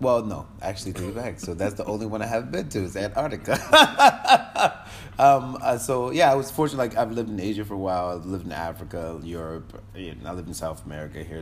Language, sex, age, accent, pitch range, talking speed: English, male, 30-49, American, 95-115 Hz, 225 wpm